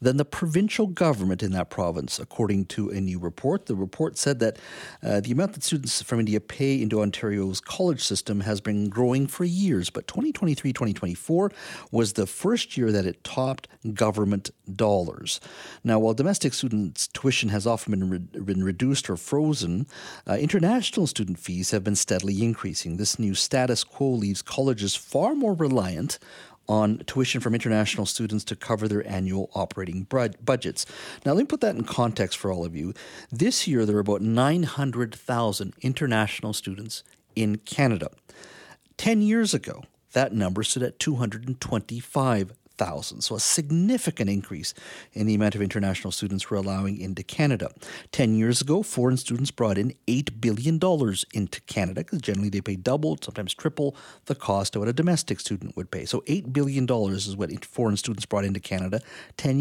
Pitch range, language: 100-140 Hz, English